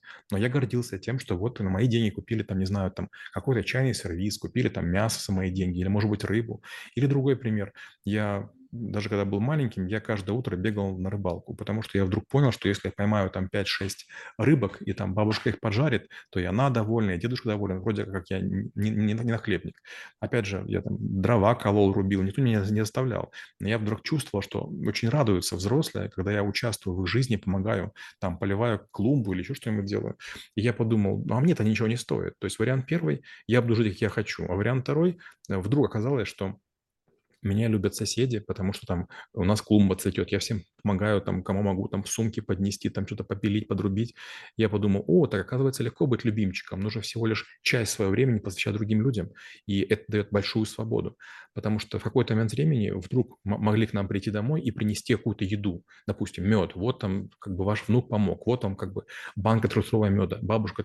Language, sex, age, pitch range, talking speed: Russian, male, 30-49, 100-115 Hz, 210 wpm